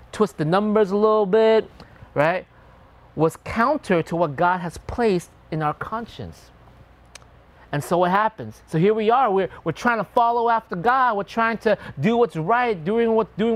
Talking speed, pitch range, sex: 180 wpm, 140-200 Hz, male